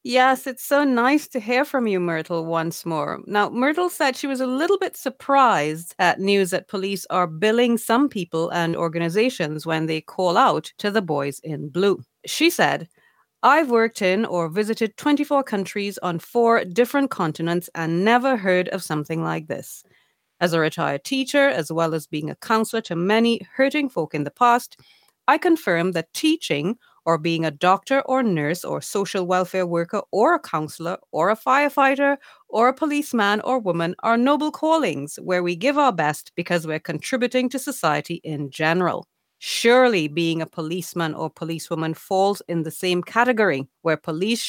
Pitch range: 165-250 Hz